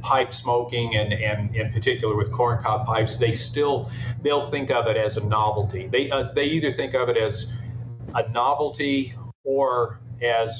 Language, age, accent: English, 40-59, American